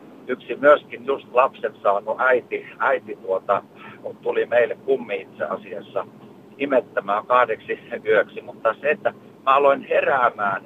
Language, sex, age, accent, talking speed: Finnish, male, 50-69, native, 125 wpm